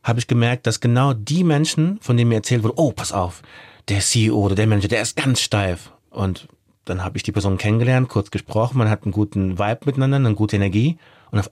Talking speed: 230 wpm